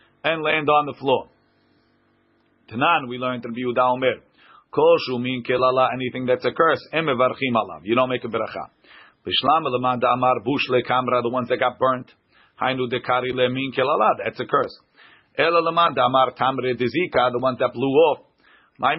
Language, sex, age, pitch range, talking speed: English, male, 40-59, 125-150 Hz, 165 wpm